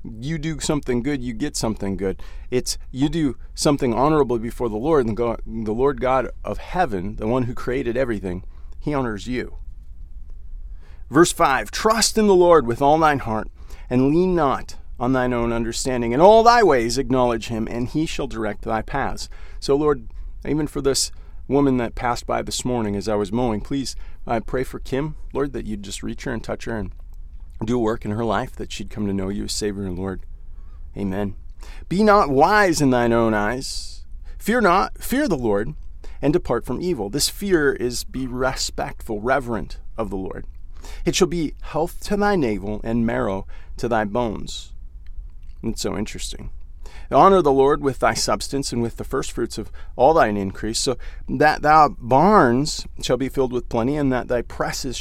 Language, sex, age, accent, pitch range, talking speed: English, male, 40-59, American, 95-135 Hz, 190 wpm